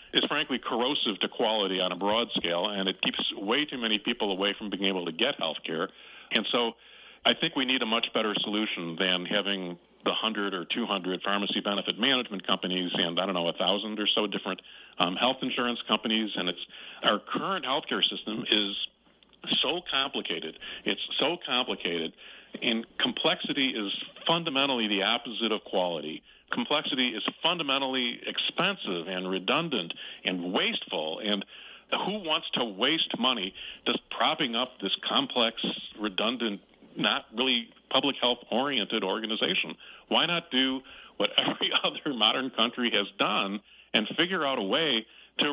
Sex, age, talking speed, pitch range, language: male, 40-59, 160 wpm, 95-120 Hz, English